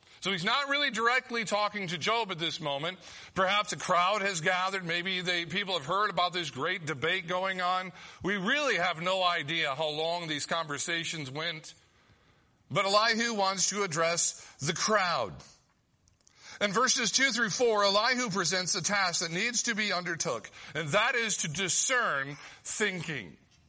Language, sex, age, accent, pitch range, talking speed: English, male, 50-69, American, 160-210 Hz, 160 wpm